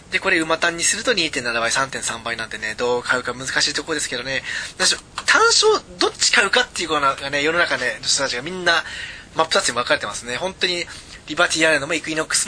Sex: male